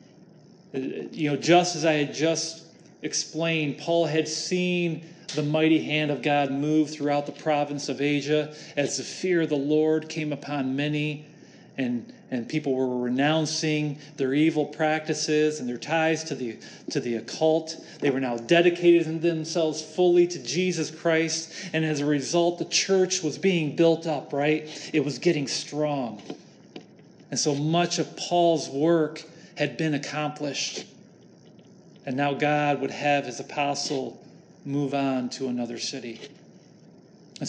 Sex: male